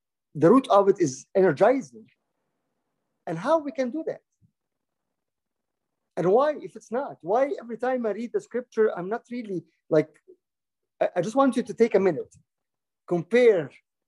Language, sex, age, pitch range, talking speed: English, male, 50-69, 165-230 Hz, 160 wpm